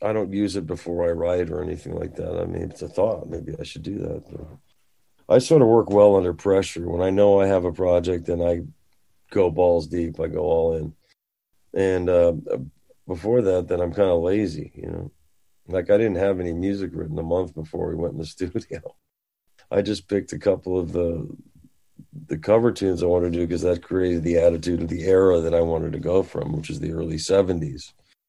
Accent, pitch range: American, 85-100 Hz